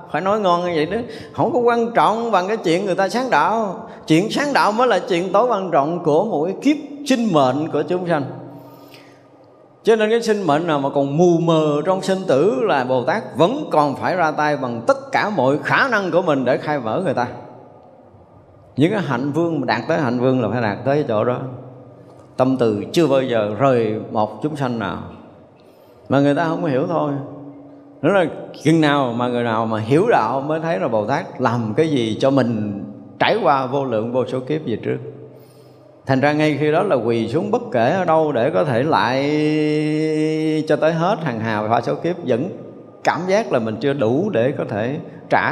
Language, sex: Vietnamese, male